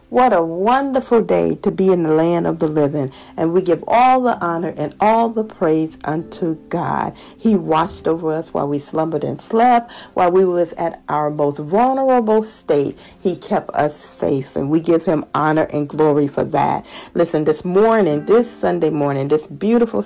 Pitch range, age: 160-235 Hz, 50-69